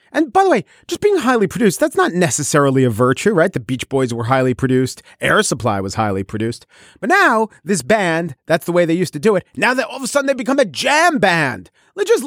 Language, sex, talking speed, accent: English, male, 245 wpm, American